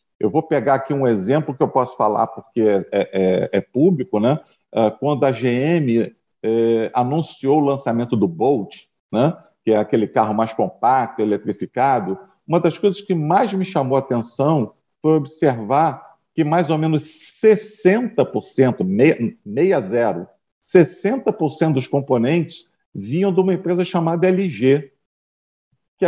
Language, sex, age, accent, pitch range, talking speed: Portuguese, male, 50-69, Brazilian, 130-180 Hz, 145 wpm